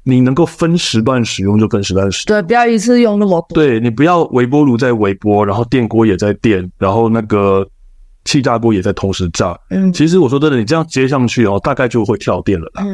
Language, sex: Chinese, male